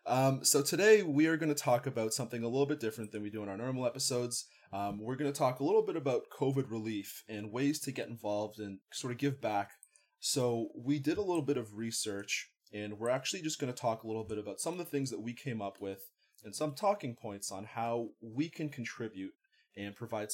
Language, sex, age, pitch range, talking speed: English, male, 20-39, 105-140 Hz, 240 wpm